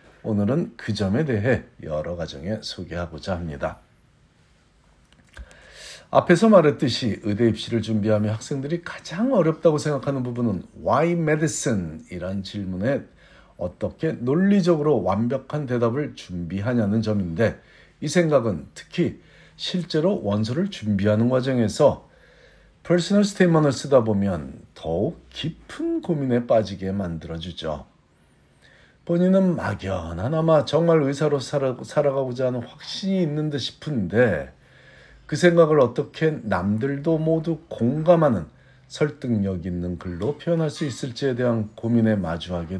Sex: male